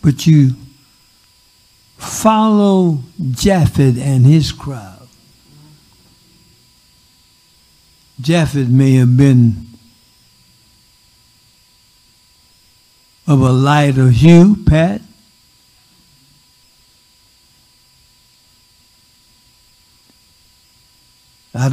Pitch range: 110-150 Hz